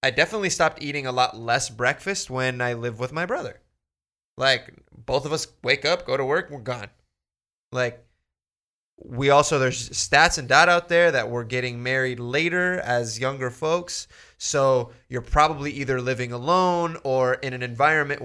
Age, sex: 20-39, male